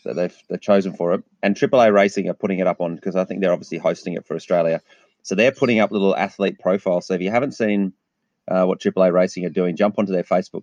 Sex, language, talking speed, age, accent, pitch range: male, English, 255 wpm, 30-49, Australian, 90-110 Hz